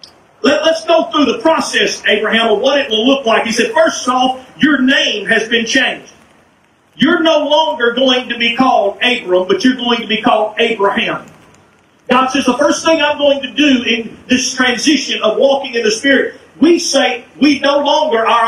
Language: English